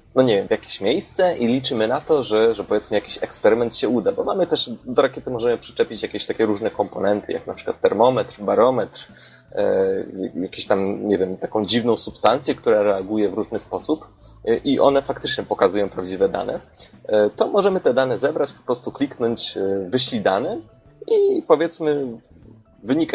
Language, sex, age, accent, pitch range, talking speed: Polish, male, 30-49, native, 105-140 Hz, 165 wpm